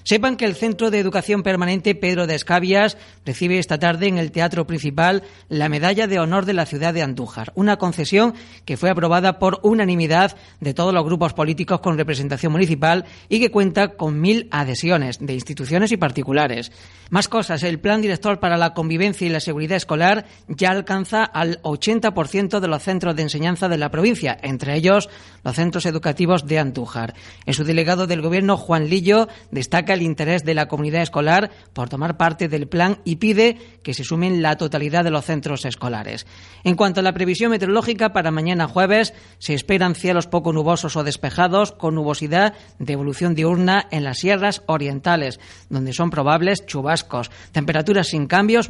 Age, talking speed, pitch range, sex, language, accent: 40-59, 175 wpm, 150-190 Hz, female, Spanish, Spanish